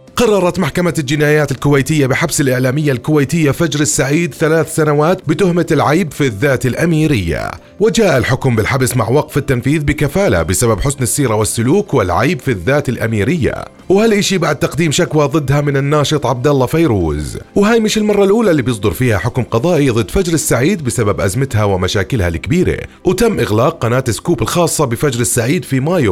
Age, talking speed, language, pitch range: 30-49, 150 wpm, Arabic, 115-165 Hz